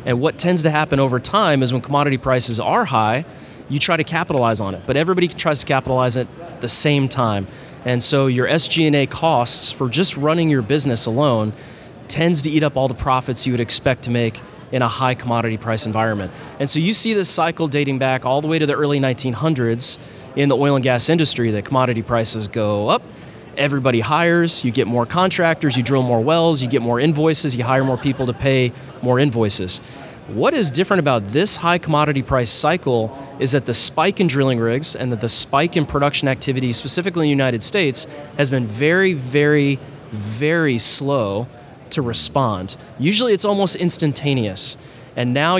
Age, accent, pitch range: 30-49, American, 125-155 Hz